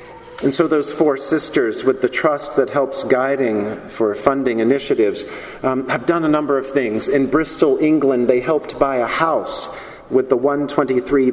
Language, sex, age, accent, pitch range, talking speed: English, male, 50-69, American, 130-160 Hz, 170 wpm